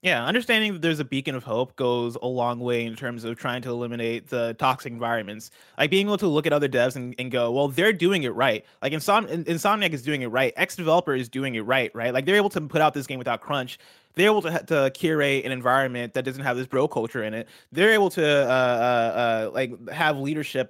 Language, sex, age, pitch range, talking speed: English, male, 20-39, 125-160 Hz, 245 wpm